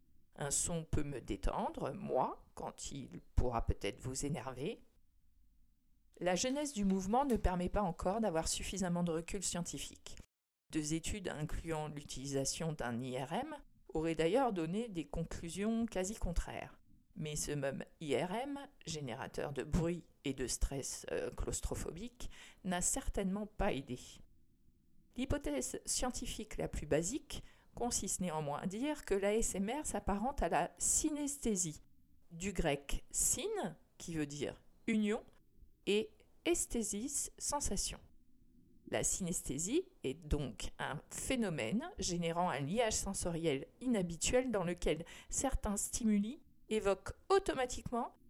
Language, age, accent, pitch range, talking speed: French, 50-69, French, 150-230 Hz, 120 wpm